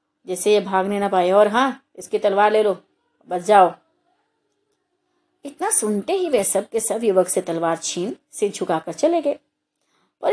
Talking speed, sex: 170 wpm, female